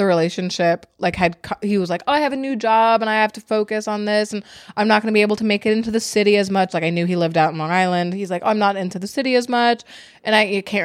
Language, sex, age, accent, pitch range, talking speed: English, female, 20-39, American, 170-215 Hz, 325 wpm